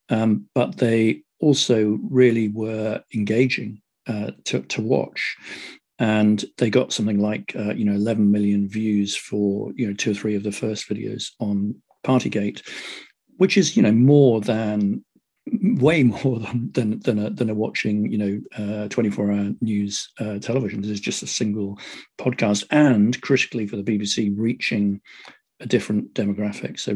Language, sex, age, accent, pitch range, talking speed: English, male, 50-69, British, 100-120 Hz, 160 wpm